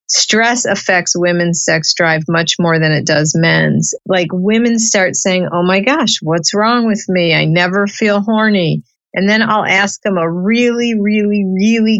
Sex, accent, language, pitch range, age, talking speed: female, American, English, 180-220 Hz, 50-69, 175 wpm